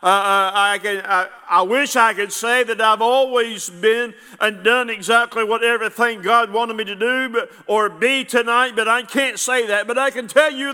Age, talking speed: 50-69, 205 wpm